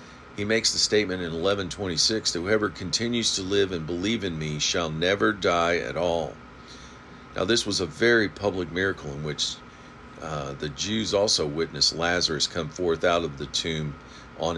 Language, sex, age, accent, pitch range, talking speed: English, male, 50-69, American, 75-105 Hz, 175 wpm